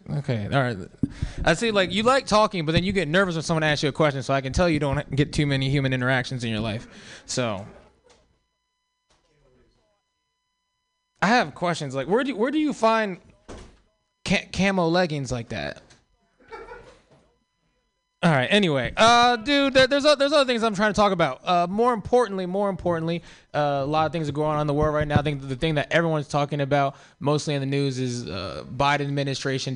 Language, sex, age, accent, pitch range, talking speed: English, male, 20-39, American, 125-180 Hz, 200 wpm